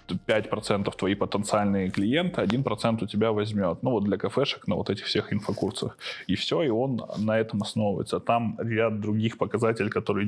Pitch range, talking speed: 105-115 Hz, 170 wpm